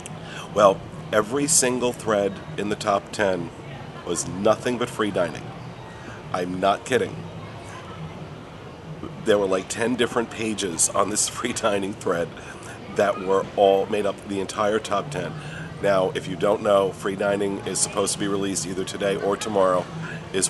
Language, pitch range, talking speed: English, 95-115 Hz, 160 wpm